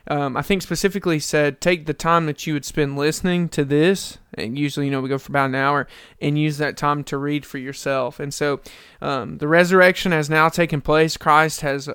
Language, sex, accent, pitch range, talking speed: English, male, American, 145-165 Hz, 220 wpm